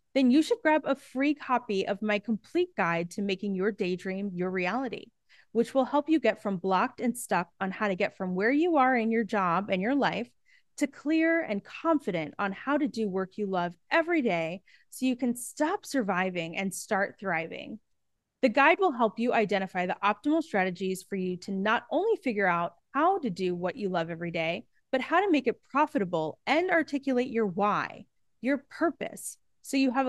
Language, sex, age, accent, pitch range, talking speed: English, female, 20-39, American, 190-270 Hz, 200 wpm